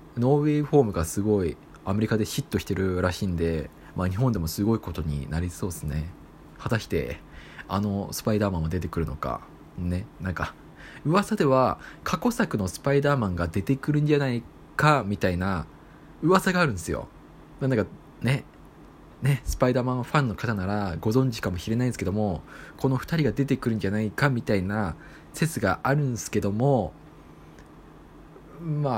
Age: 20-39